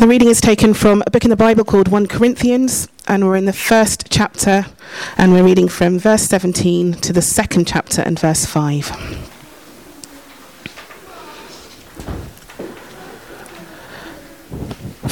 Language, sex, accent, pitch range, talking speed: English, female, British, 175-230 Hz, 125 wpm